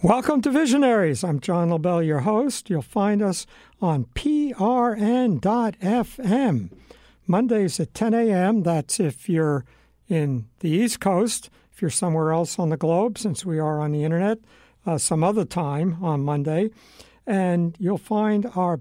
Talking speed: 150 wpm